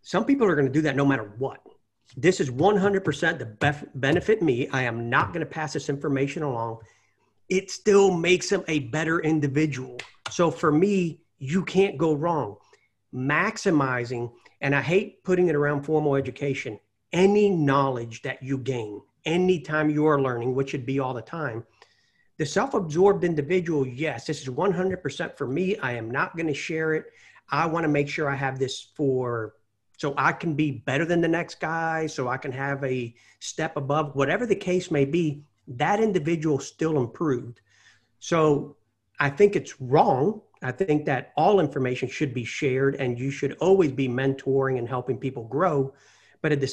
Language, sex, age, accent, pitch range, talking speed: English, male, 40-59, American, 135-170 Hz, 180 wpm